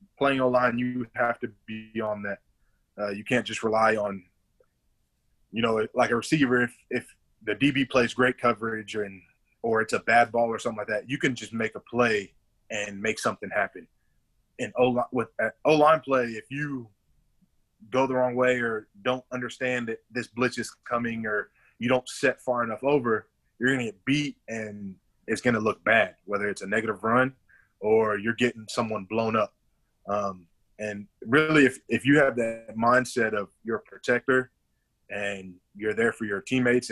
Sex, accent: male, American